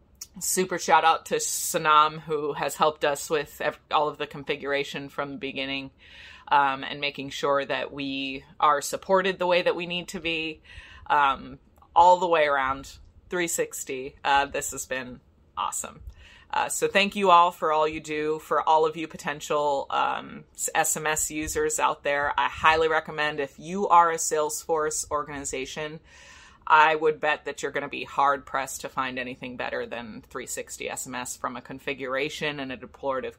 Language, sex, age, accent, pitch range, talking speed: English, female, 30-49, American, 135-160 Hz, 170 wpm